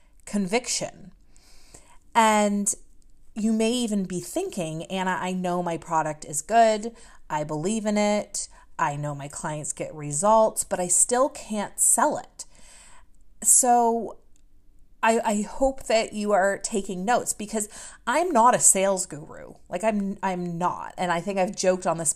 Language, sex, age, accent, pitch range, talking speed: English, female, 30-49, American, 170-215 Hz, 150 wpm